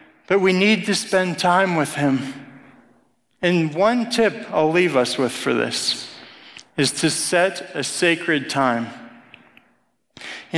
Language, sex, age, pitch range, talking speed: English, male, 40-59, 160-215 Hz, 135 wpm